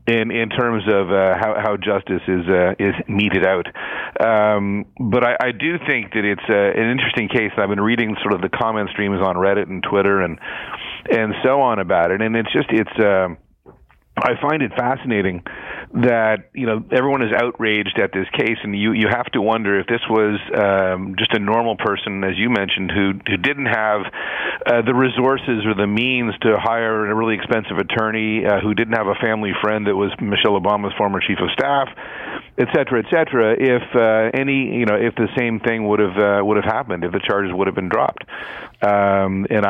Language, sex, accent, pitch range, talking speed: English, male, American, 100-115 Hz, 205 wpm